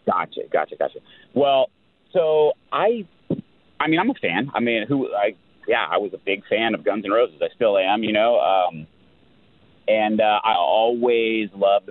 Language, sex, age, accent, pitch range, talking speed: English, male, 30-49, American, 105-175 Hz, 180 wpm